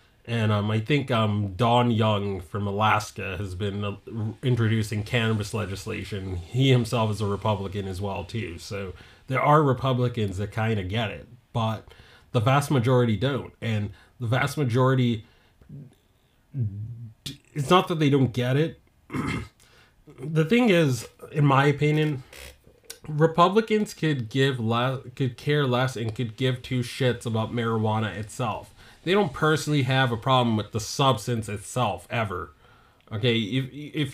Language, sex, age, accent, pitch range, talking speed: English, male, 30-49, American, 110-135 Hz, 140 wpm